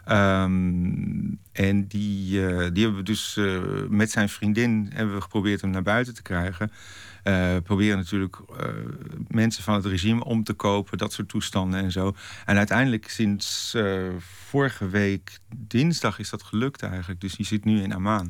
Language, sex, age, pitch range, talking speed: Dutch, male, 50-69, 95-115 Hz, 175 wpm